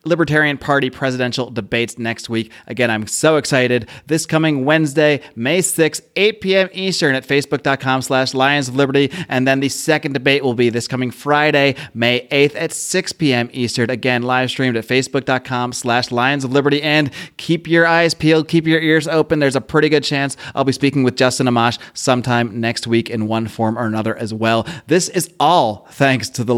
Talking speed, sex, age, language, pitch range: 185 wpm, male, 30-49, English, 120-150 Hz